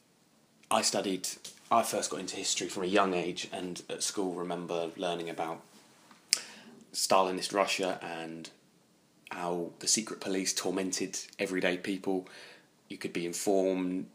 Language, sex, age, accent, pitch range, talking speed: English, male, 20-39, British, 85-100 Hz, 130 wpm